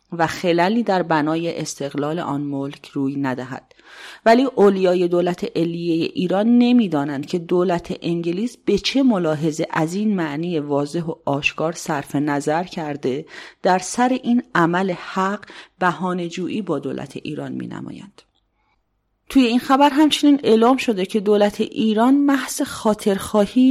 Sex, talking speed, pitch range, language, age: female, 135 wpm, 160-215 Hz, English, 30-49